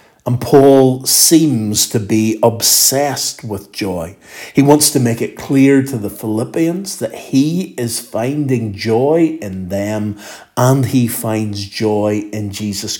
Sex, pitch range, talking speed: male, 105-140 Hz, 140 wpm